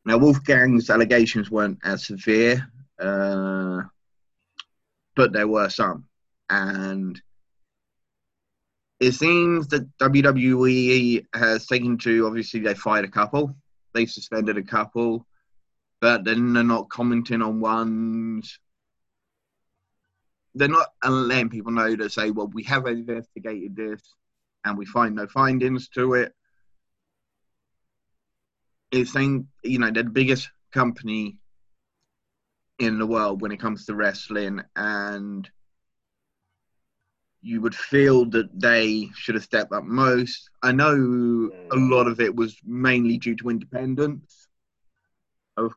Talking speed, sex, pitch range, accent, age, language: 120 wpm, male, 110-125 Hz, British, 20-39, English